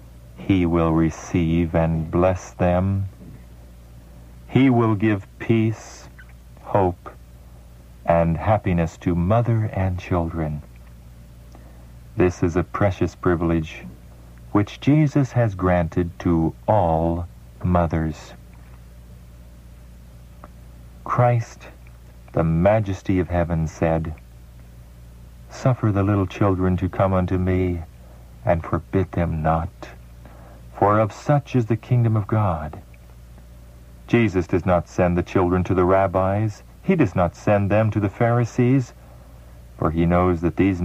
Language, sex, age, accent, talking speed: English, male, 50-69, American, 115 wpm